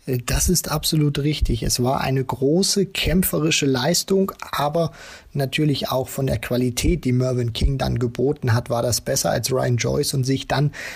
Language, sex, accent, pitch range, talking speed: German, male, German, 130-160 Hz, 170 wpm